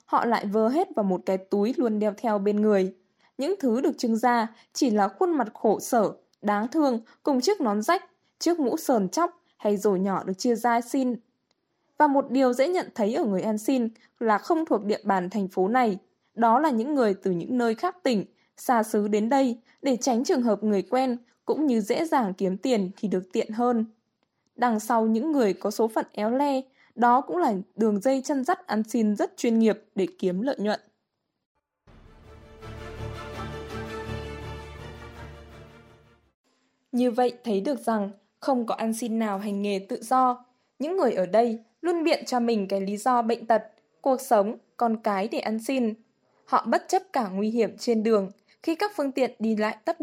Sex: female